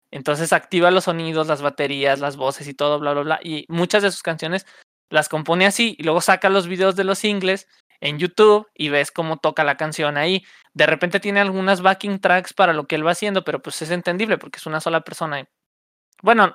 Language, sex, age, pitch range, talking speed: Spanish, male, 20-39, 155-195 Hz, 220 wpm